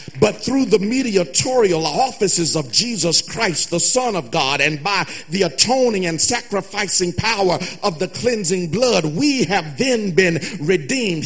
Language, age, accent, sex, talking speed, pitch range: English, 50-69, American, male, 150 wpm, 165-235 Hz